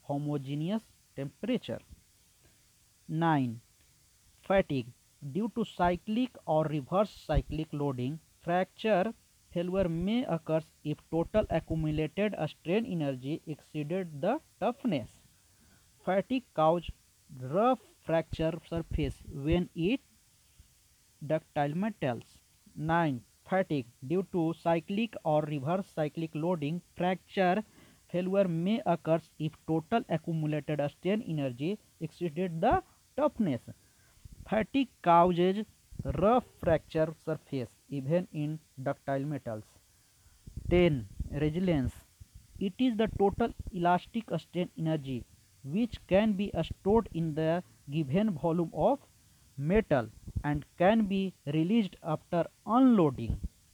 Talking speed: 95 wpm